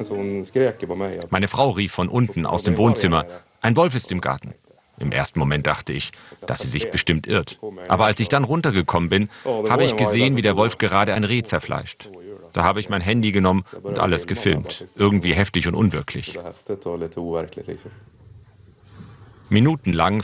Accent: German